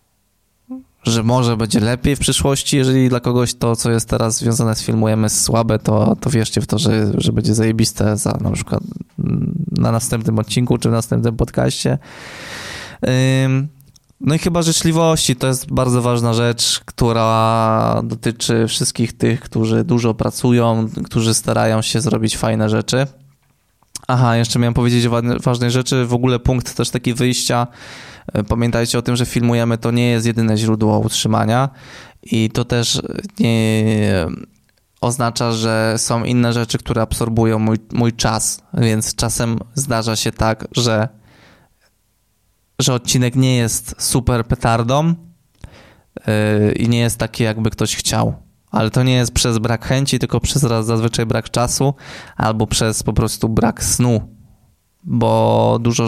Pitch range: 110-125 Hz